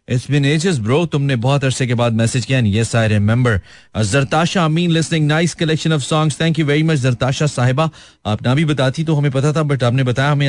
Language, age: Hindi, 30-49